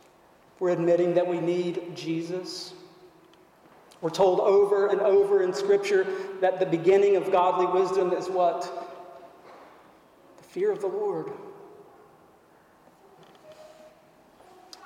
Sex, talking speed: male, 110 wpm